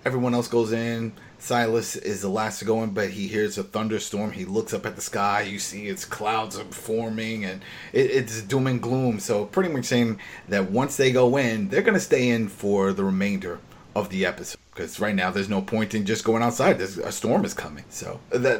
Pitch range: 105-135 Hz